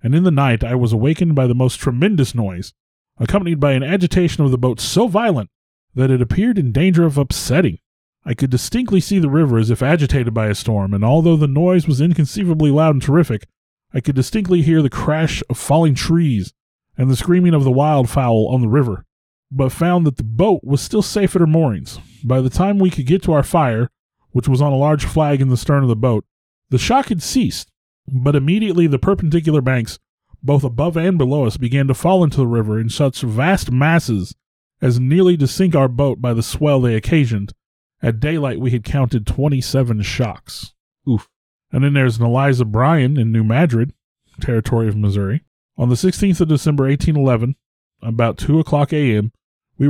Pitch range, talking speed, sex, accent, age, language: 120-160 Hz, 200 wpm, male, American, 30-49, English